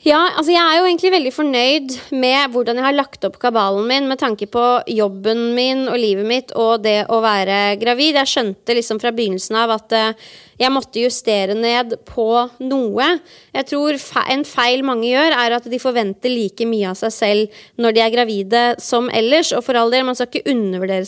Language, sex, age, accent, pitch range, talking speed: English, female, 20-39, Swedish, 220-270 Hz, 200 wpm